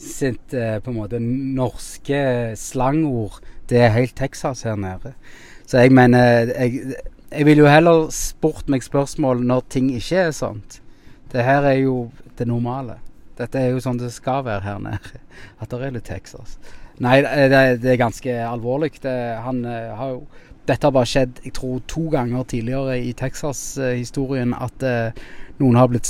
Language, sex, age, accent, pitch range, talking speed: English, male, 20-39, Norwegian, 110-130 Hz, 195 wpm